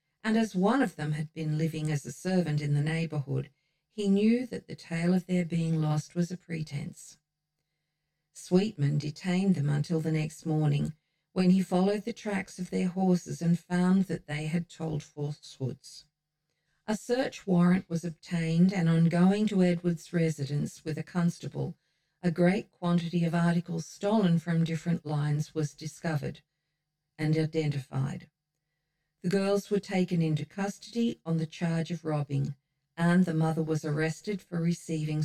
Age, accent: 50-69, Australian